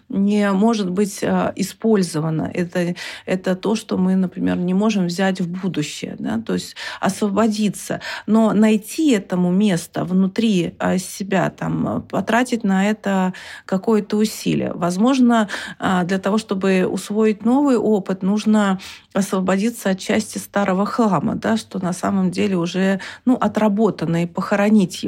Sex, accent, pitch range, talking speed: female, native, 190-225 Hz, 130 wpm